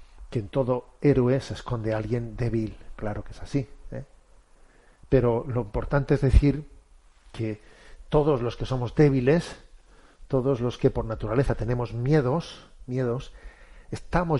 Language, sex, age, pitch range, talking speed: Spanish, male, 40-59, 110-140 Hz, 140 wpm